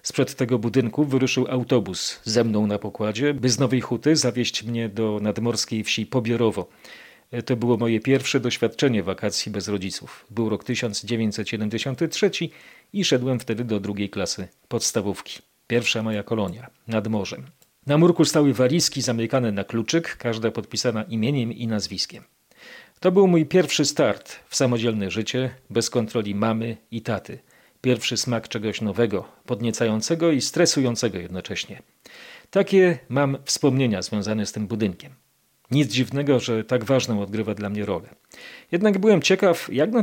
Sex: male